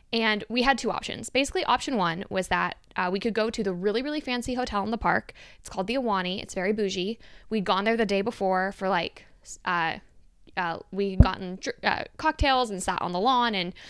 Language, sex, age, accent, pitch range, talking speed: English, female, 10-29, American, 190-235 Hz, 220 wpm